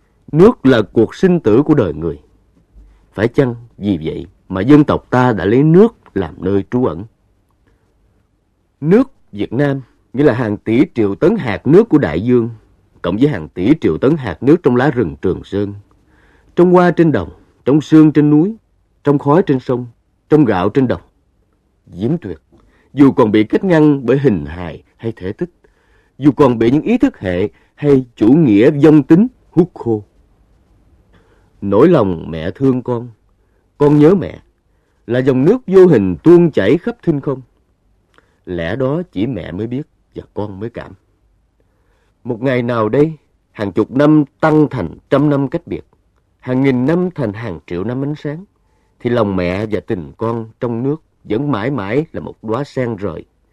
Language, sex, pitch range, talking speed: Vietnamese, male, 95-145 Hz, 180 wpm